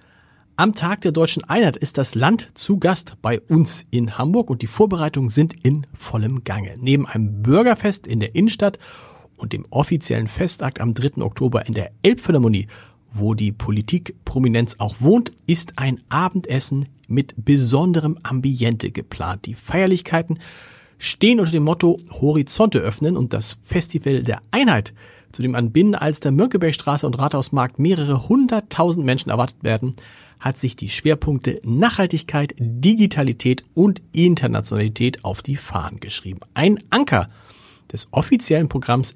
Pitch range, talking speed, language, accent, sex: 115-165 Hz, 145 wpm, German, German, male